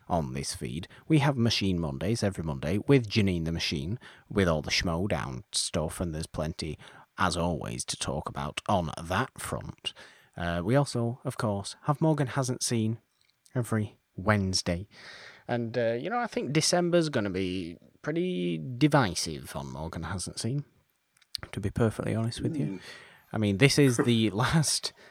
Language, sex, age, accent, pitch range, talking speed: English, male, 30-49, British, 85-130 Hz, 165 wpm